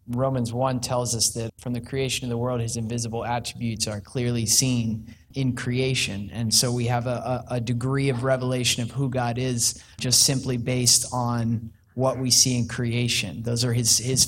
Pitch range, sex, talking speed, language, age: 115-130 Hz, male, 190 wpm, English, 20-39